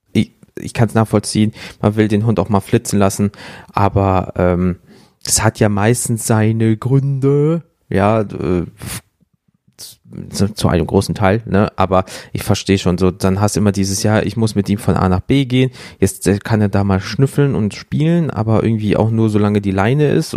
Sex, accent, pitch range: male, German, 95-115 Hz